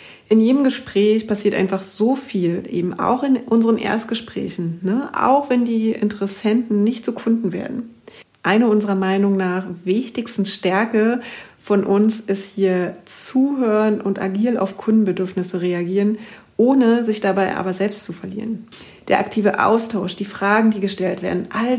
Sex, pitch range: female, 190-225 Hz